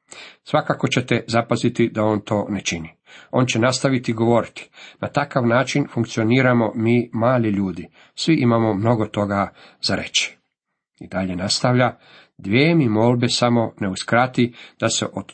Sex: male